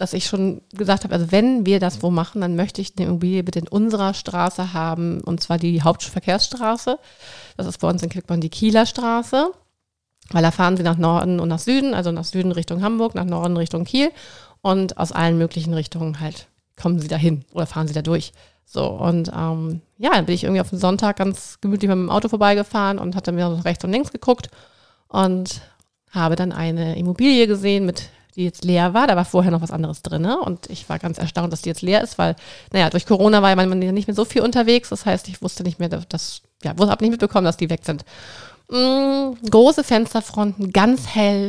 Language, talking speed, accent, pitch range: German, 220 wpm, German, 170-210 Hz